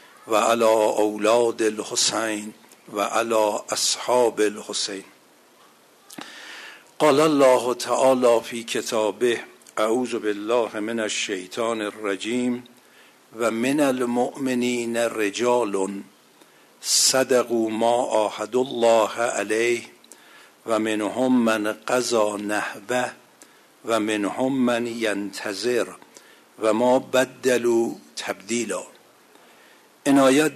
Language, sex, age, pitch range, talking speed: Persian, male, 60-79, 110-125 Hz, 75 wpm